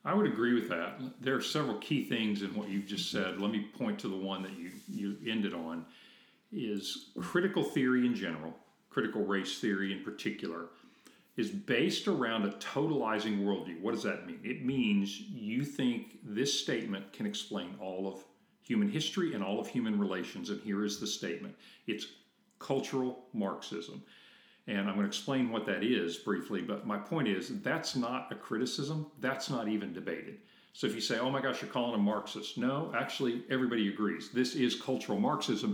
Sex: male